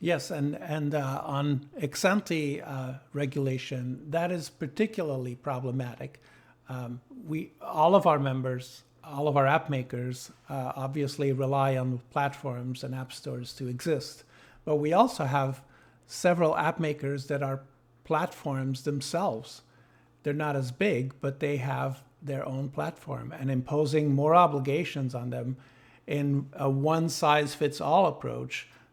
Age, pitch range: 50-69, 130-155 Hz